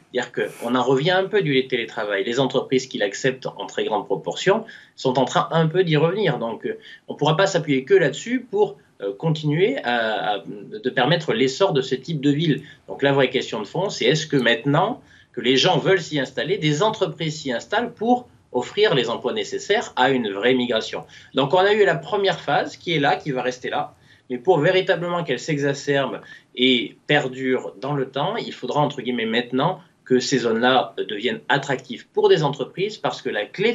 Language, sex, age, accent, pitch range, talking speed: French, male, 20-39, French, 130-175 Hz, 200 wpm